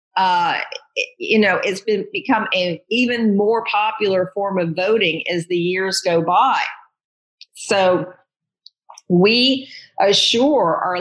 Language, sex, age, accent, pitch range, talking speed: English, female, 50-69, American, 175-230 Hz, 120 wpm